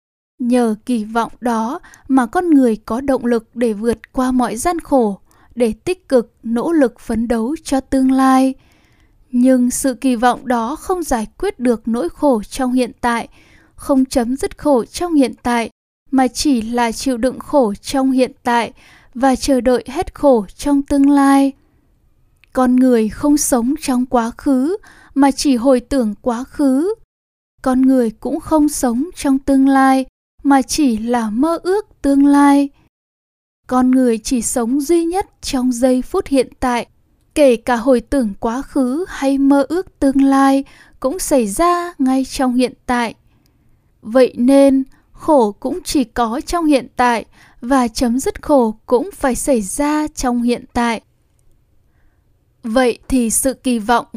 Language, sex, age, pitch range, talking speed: Vietnamese, female, 10-29, 240-280 Hz, 160 wpm